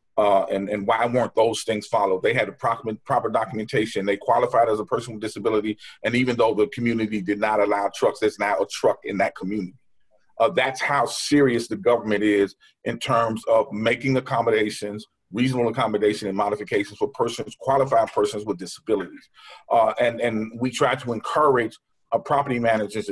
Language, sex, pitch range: English, male, 110-130 Hz